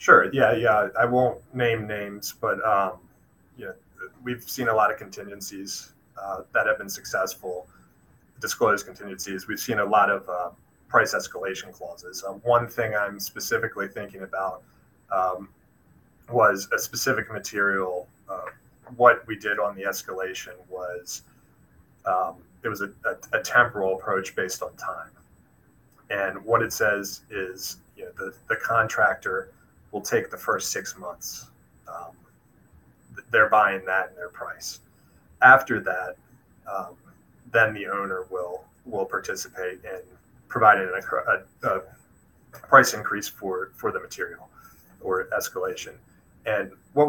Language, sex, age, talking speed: English, male, 30-49, 140 wpm